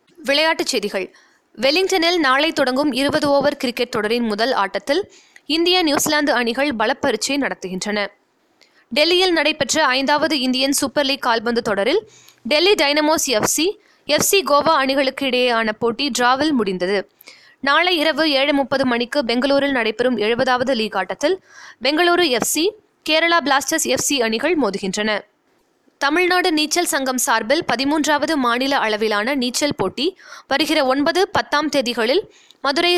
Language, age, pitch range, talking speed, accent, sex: Tamil, 20-39, 240-320 Hz, 115 wpm, native, female